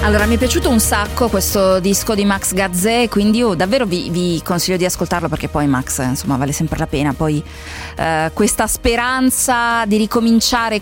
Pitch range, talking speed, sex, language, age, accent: 175-255 Hz, 185 wpm, female, Italian, 30-49, native